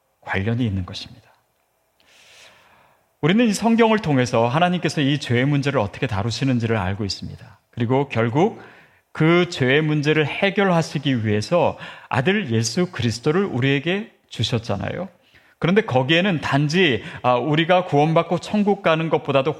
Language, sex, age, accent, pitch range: Korean, male, 40-59, native, 120-185 Hz